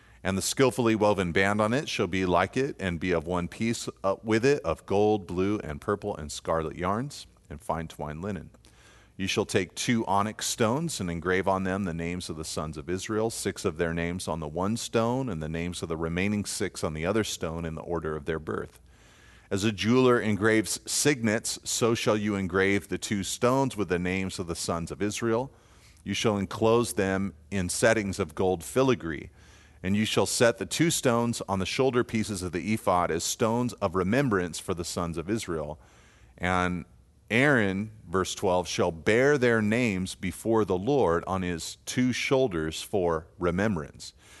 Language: English